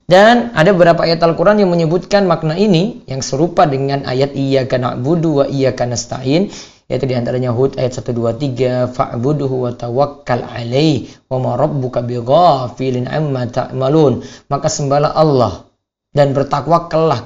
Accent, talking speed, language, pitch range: native, 130 wpm, Indonesian, 130-195 Hz